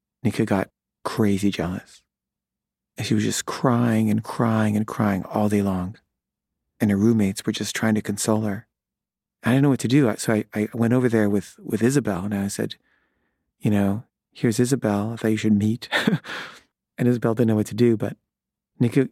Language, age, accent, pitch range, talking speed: English, 40-59, American, 105-120 Hz, 190 wpm